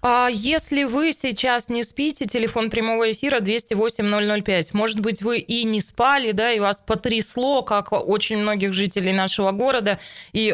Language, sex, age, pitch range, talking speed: Russian, female, 20-39, 190-230 Hz, 160 wpm